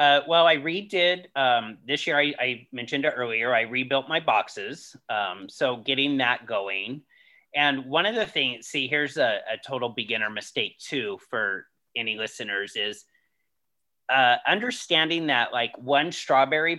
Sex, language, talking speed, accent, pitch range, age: male, English, 155 wpm, American, 125-165 Hz, 30-49